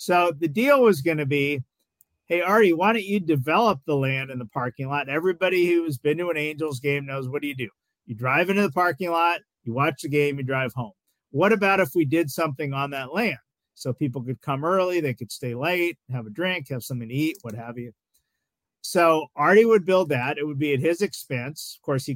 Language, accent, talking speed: English, American, 230 wpm